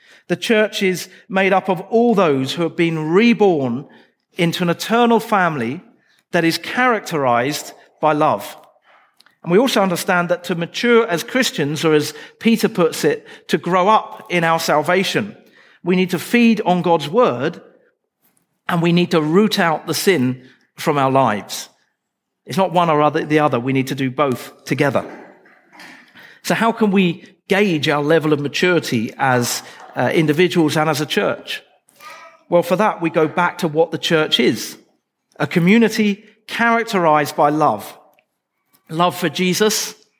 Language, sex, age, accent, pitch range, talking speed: English, male, 40-59, British, 150-200 Hz, 160 wpm